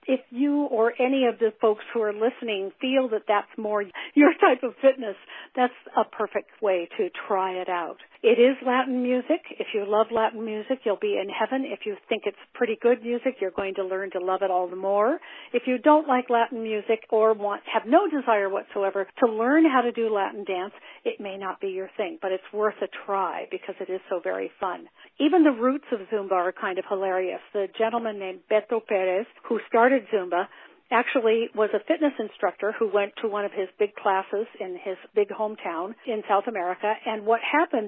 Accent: American